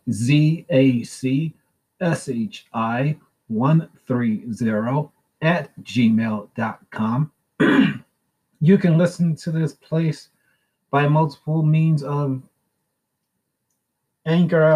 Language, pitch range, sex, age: English, 130-160 Hz, male, 30-49